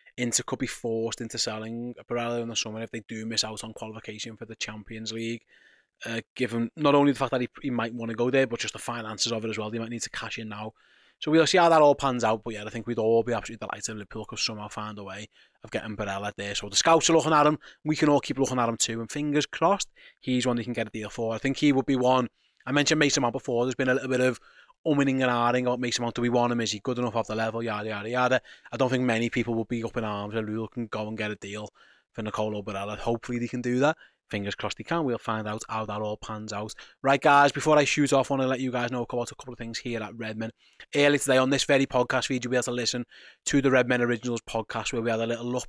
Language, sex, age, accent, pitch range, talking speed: English, male, 20-39, British, 110-125 Hz, 295 wpm